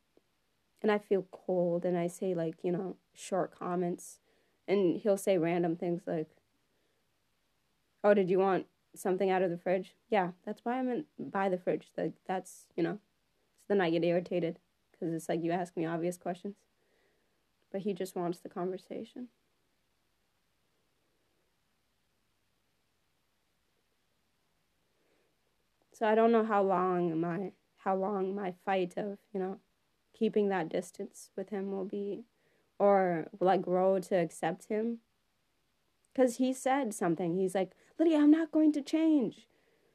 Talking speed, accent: 145 wpm, American